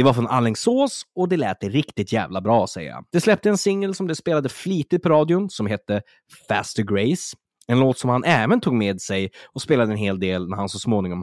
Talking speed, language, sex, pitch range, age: 230 wpm, Swedish, male, 100-150 Hz, 20-39